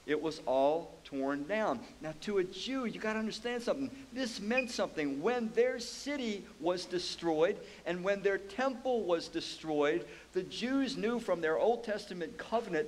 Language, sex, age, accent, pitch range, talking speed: English, male, 50-69, American, 155-230 Hz, 170 wpm